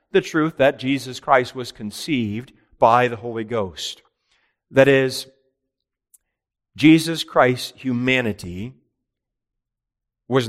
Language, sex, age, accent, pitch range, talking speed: English, male, 40-59, American, 115-140 Hz, 95 wpm